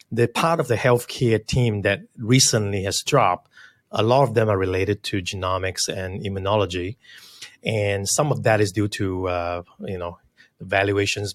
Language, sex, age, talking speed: English, male, 30-49, 165 wpm